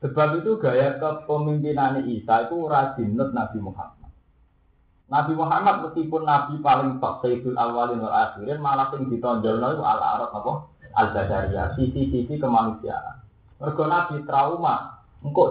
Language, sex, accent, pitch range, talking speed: Indonesian, male, native, 105-145 Hz, 135 wpm